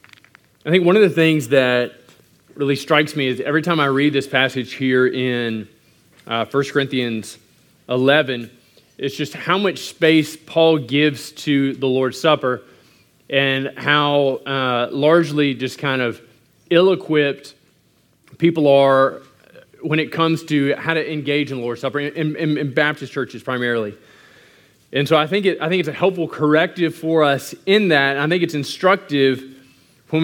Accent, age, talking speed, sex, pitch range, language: American, 20-39, 160 wpm, male, 135-165 Hz, English